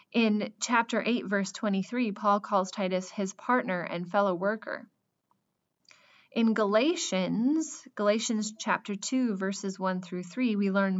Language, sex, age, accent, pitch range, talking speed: English, female, 20-39, American, 185-235 Hz, 130 wpm